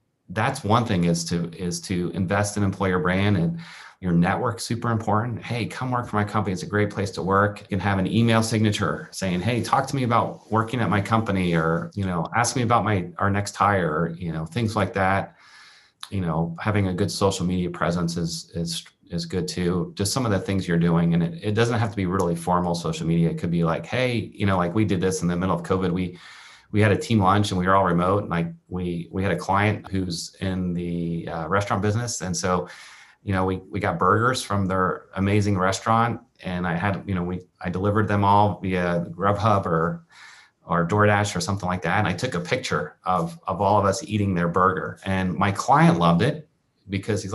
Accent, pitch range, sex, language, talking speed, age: American, 85-105 Hz, male, English, 230 wpm, 30-49